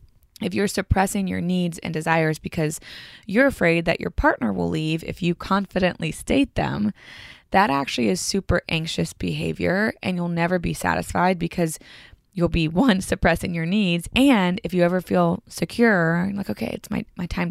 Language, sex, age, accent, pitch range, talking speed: English, female, 20-39, American, 170-205 Hz, 170 wpm